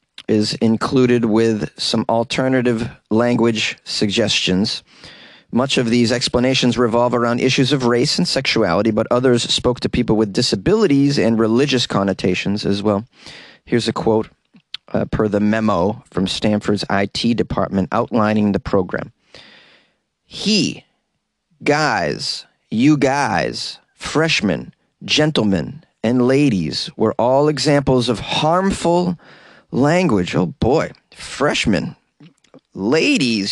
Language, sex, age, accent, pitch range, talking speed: English, male, 30-49, American, 110-160 Hz, 110 wpm